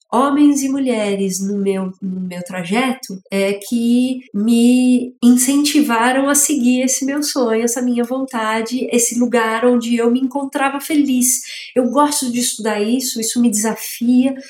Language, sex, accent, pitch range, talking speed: Portuguese, female, Brazilian, 205-270 Hz, 140 wpm